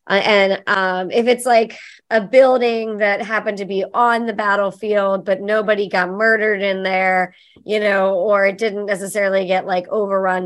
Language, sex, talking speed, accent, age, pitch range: English, male, 170 wpm, American, 30-49, 185-220 Hz